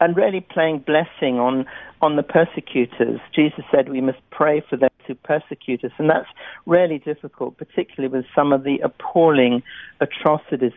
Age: 60-79